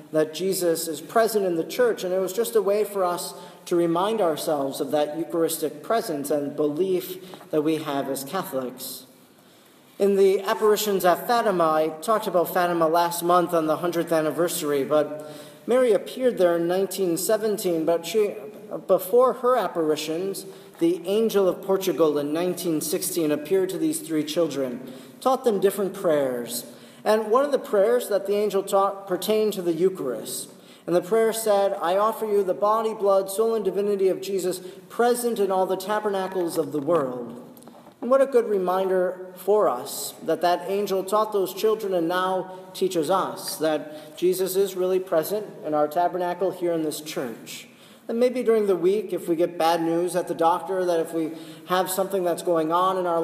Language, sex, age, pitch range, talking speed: English, male, 40-59, 160-200 Hz, 180 wpm